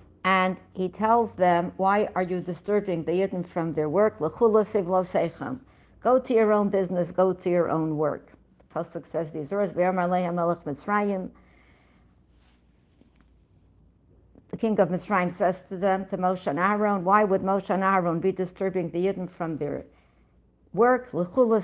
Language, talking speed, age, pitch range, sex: English, 150 wpm, 60-79, 175-220 Hz, female